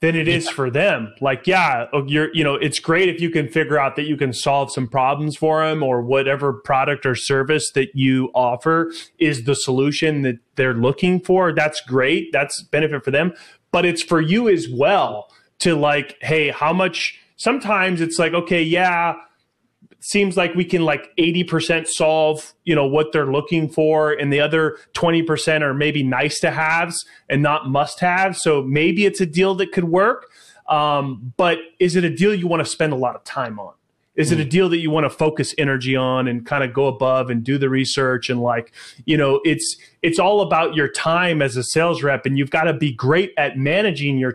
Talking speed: 210 wpm